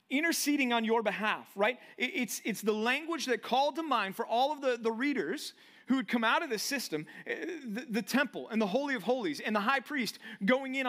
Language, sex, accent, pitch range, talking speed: English, male, American, 190-260 Hz, 220 wpm